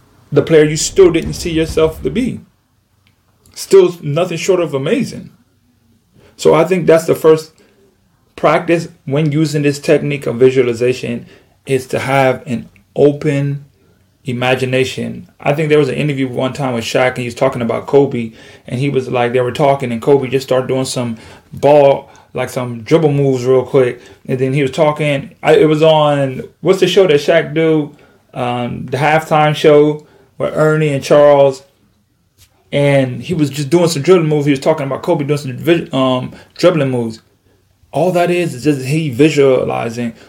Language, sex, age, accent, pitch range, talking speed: English, male, 30-49, American, 125-155 Hz, 175 wpm